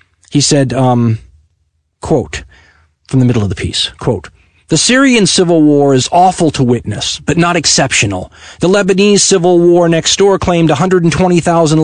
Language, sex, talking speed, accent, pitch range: English, male, 150 wpm, American, 130-180 Hz